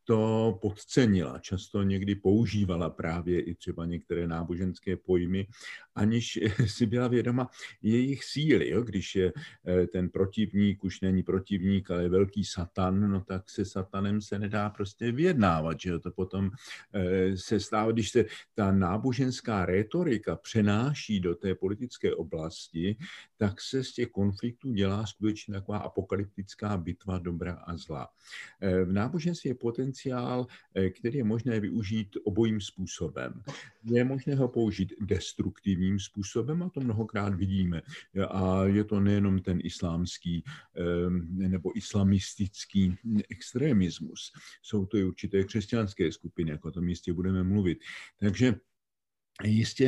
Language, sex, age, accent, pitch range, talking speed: Czech, male, 50-69, native, 95-110 Hz, 130 wpm